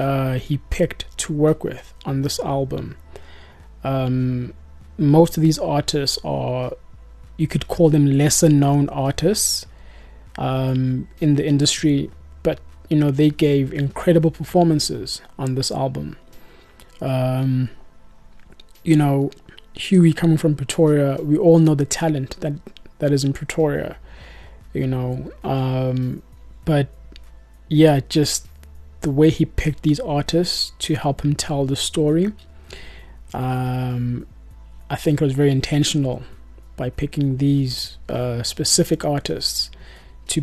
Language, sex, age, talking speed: English, male, 20-39, 125 wpm